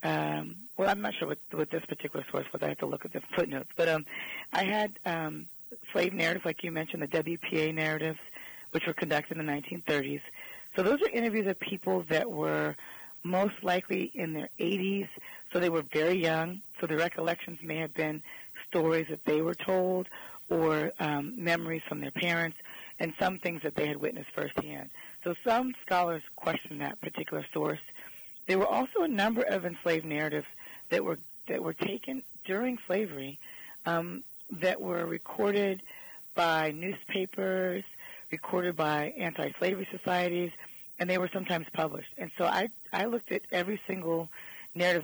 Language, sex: English, female